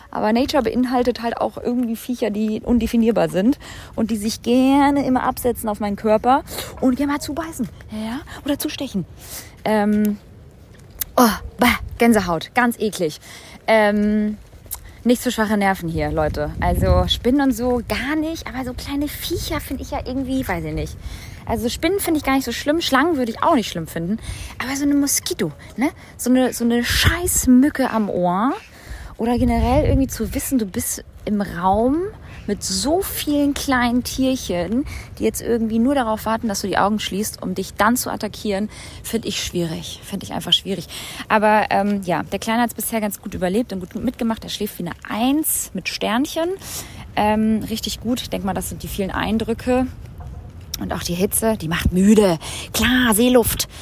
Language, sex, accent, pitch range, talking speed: German, female, German, 200-255 Hz, 180 wpm